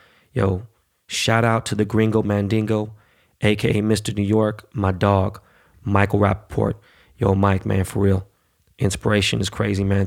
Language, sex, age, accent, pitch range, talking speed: English, male, 20-39, American, 95-110 Hz, 145 wpm